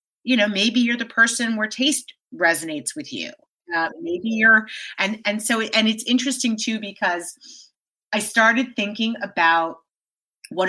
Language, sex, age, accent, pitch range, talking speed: English, female, 30-49, American, 175-230 Hz, 150 wpm